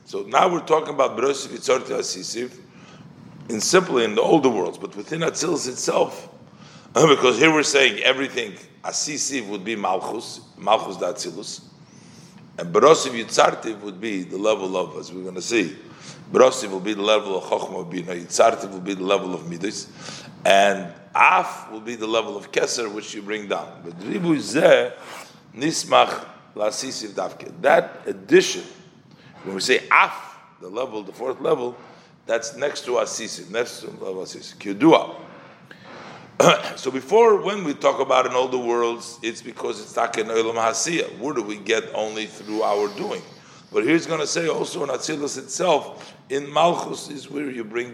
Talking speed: 160 wpm